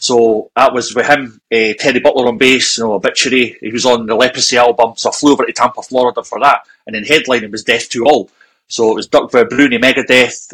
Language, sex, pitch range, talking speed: English, male, 120-145 Hz, 235 wpm